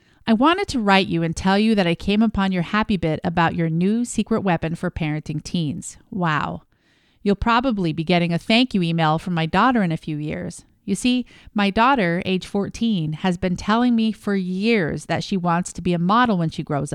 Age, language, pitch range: 40-59, English, 170-220 Hz